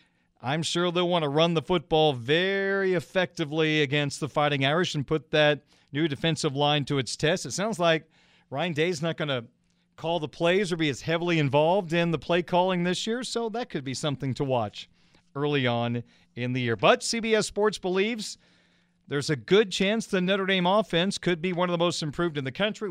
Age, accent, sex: 40-59, American, male